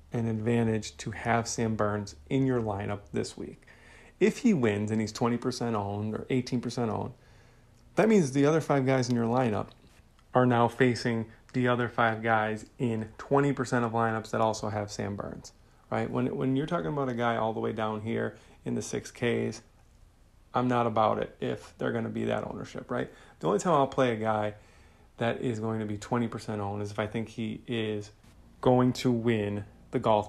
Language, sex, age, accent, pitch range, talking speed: English, male, 30-49, American, 105-125 Hz, 195 wpm